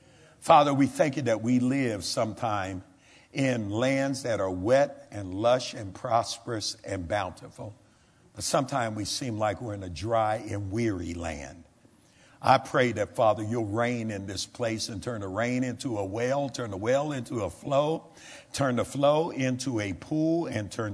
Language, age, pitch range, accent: English, 60-79, 105-130 Hz, American